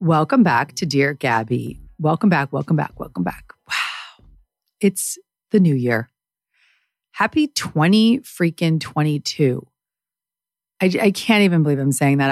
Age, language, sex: 30-49, English, female